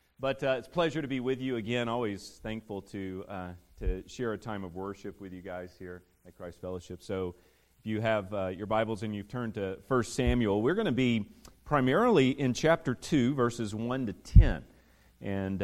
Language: English